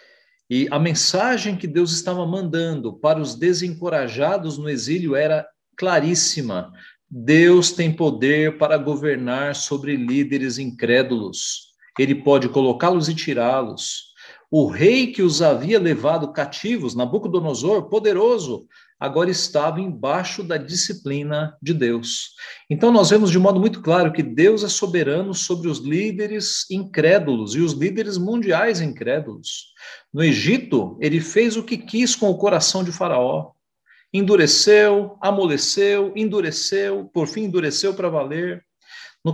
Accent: Brazilian